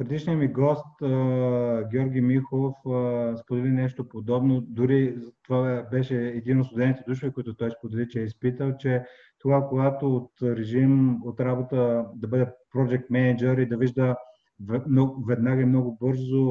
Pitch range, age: 120-140 Hz, 30-49